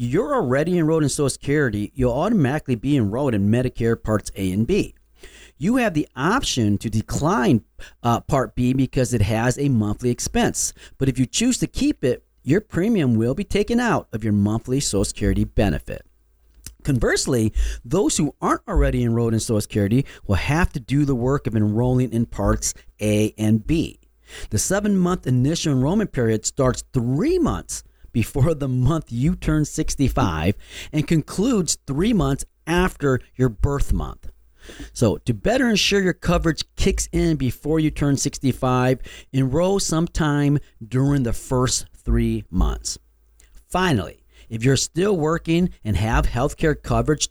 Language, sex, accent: English, male, American